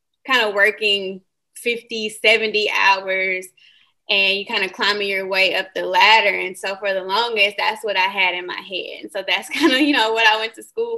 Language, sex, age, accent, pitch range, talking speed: English, female, 20-39, American, 200-270 Hz, 220 wpm